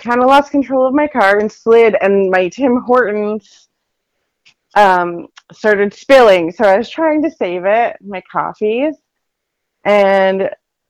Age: 30-49